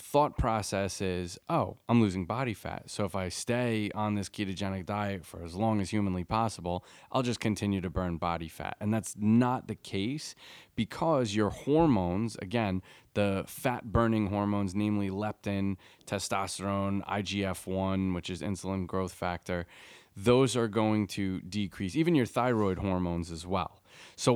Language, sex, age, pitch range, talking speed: English, male, 30-49, 95-120 Hz, 155 wpm